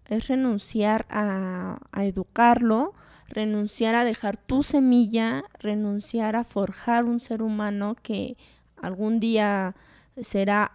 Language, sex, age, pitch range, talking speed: Spanish, female, 20-39, 190-230 Hz, 110 wpm